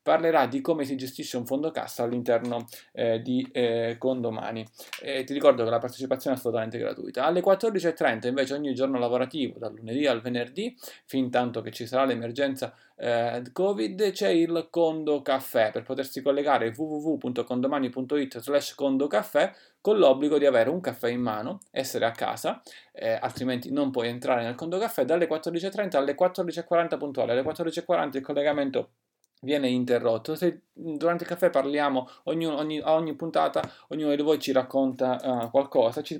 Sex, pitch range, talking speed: male, 125-155 Hz, 165 wpm